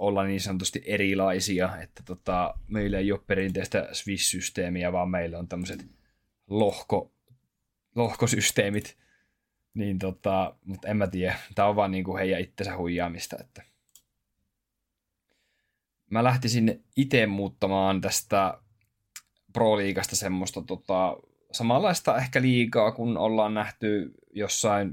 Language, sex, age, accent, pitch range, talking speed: Finnish, male, 20-39, native, 90-105 Hz, 110 wpm